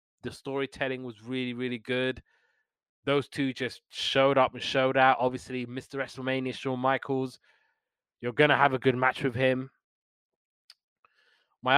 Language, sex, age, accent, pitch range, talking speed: English, male, 20-39, British, 130-145 Hz, 150 wpm